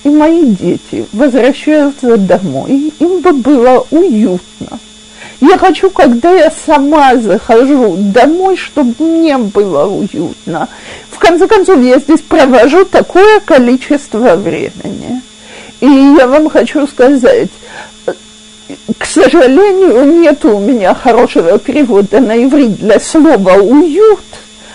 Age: 50-69